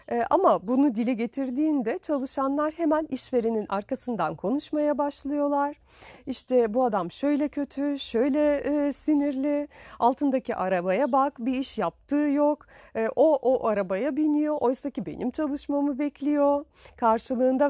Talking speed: 115 wpm